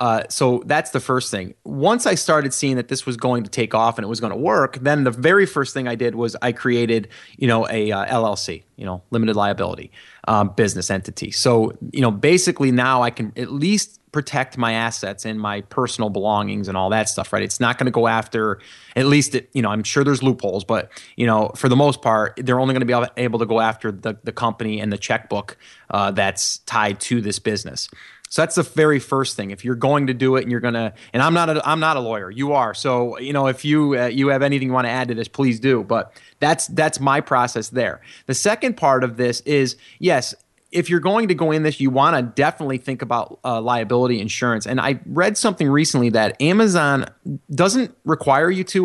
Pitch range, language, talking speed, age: 115-140 Hz, English, 235 wpm, 30-49